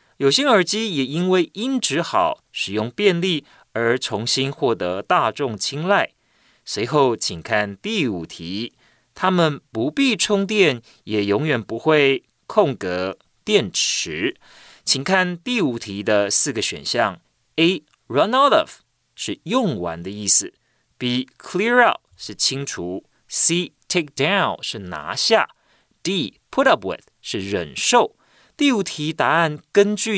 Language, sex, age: Chinese, male, 30-49